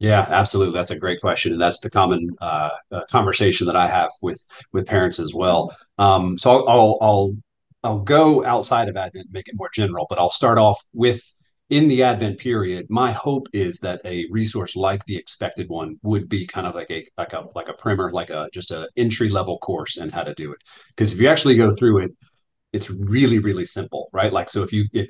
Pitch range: 95-115 Hz